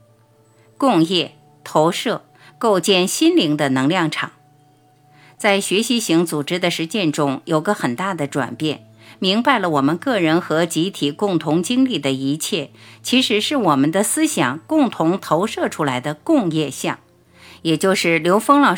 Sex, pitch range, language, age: female, 145-205 Hz, Chinese, 50-69